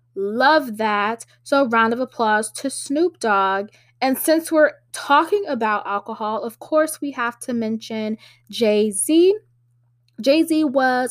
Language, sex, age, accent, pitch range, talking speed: English, female, 10-29, American, 195-265 Hz, 130 wpm